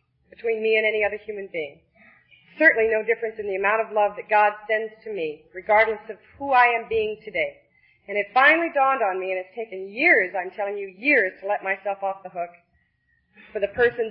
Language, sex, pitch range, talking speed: English, female, 205-310 Hz, 215 wpm